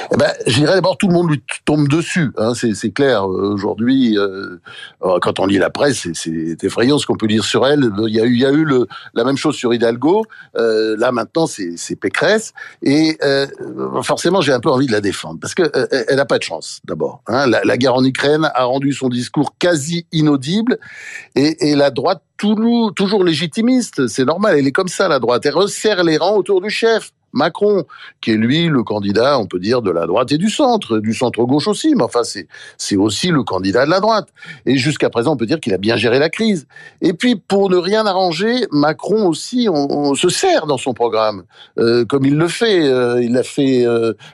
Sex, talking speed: male, 235 wpm